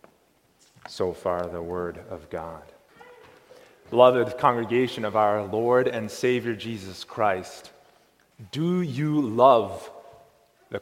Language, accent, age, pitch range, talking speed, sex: English, American, 30-49, 145-220 Hz, 105 wpm, male